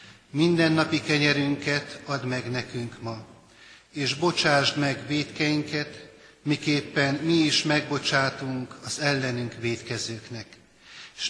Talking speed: 100 wpm